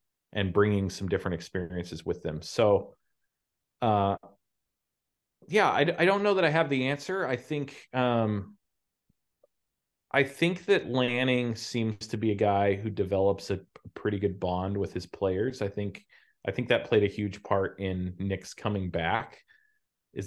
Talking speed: 160 wpm